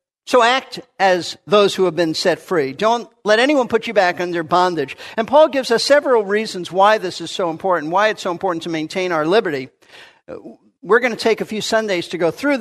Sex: male